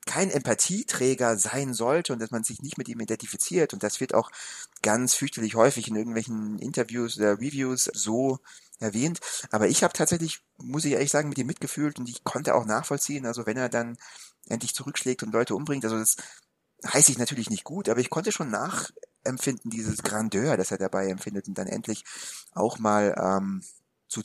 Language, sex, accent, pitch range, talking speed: German, male, German, 105-135 Hz, 190 wpm